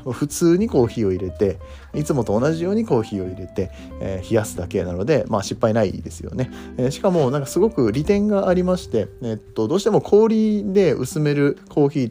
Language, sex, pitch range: Japanese, male, 100-155 Hz